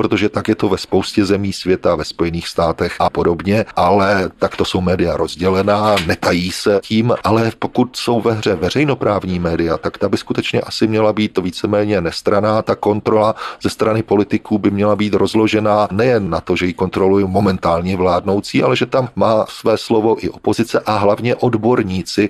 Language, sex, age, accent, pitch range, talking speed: Czech, male, 40-59, native, 95-110 Hz, 185 wpm